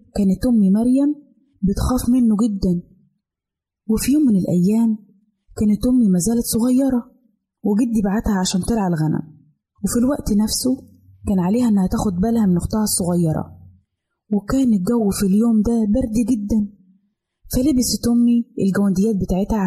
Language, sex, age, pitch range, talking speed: Arabic, female, 20-39, 195-235 Hz, 125 wpm